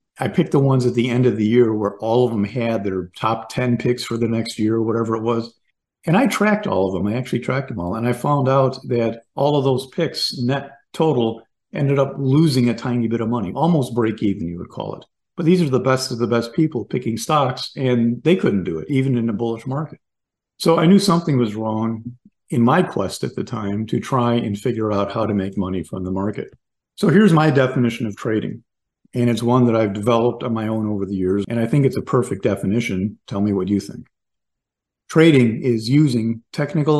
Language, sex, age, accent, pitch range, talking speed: English, male, 50-69, American, 110-135 Hz, 230 wpm